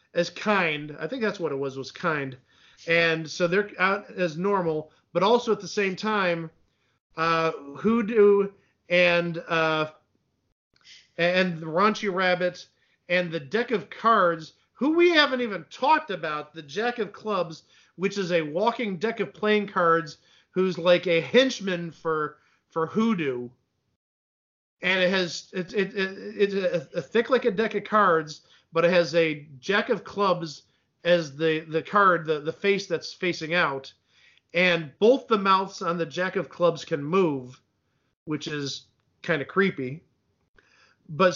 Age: 40-59